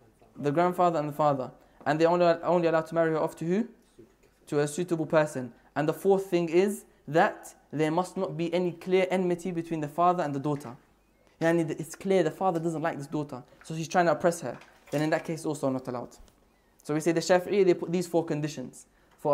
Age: 20-39